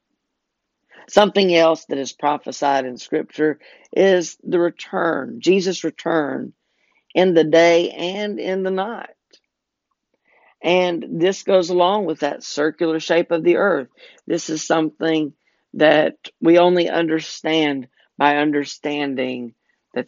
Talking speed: 120 wpm